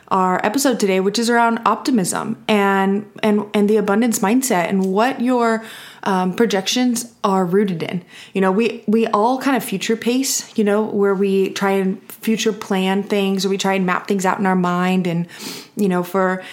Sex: female